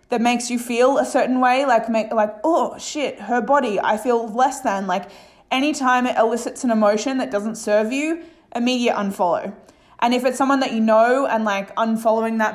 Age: 20-39